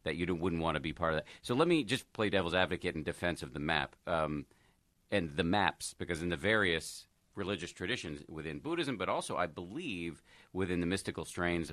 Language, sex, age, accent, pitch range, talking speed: English, male, 50-69, American, 85-105 Hz, 210 wpm